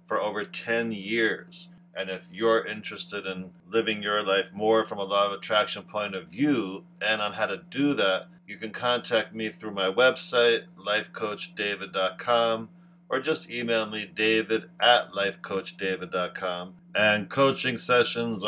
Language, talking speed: English, 145 wpm